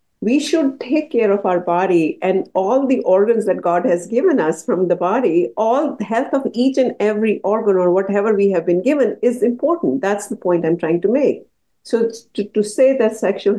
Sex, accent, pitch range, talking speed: female, Indian, 175-235 Hz, 210 wpm